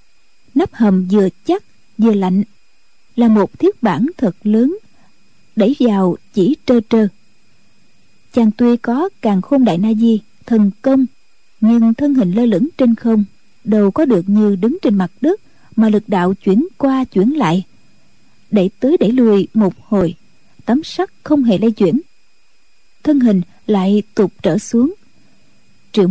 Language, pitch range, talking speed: Vietnamese, 205-270 Hz, 155 wpm